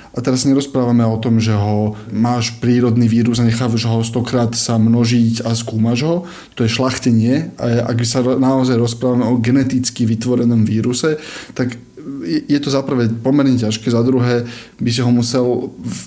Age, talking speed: 20-39, 170 wpm